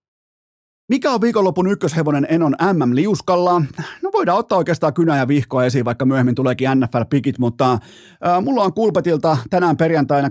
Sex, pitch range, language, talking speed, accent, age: male, 125-160 Hz, Finnish, 145 wpm, native, 30-49